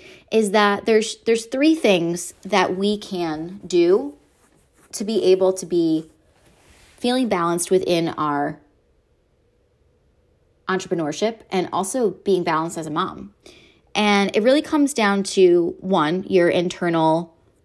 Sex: female